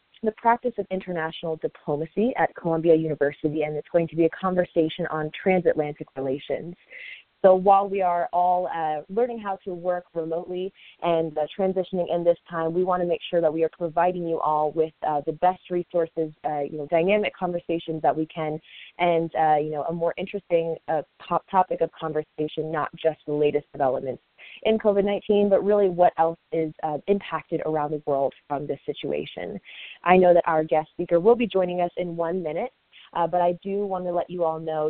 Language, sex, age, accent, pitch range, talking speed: English, female, 20-39, American, 155-185 Hz, 195 wpm